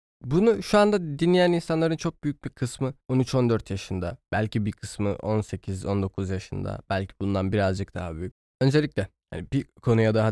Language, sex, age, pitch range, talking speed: Turkish, male, 20-39, 100-135 Hz, 150 wpm